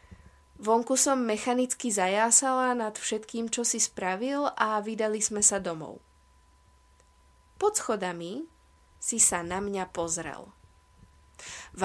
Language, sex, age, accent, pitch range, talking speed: Czech, female, 20-39, native, 170-235 Hz, 110 wpm